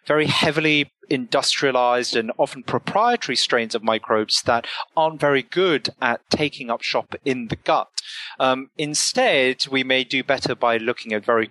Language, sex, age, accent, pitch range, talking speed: English, male, 30-49, British, 120-160 Hz, 155 wpm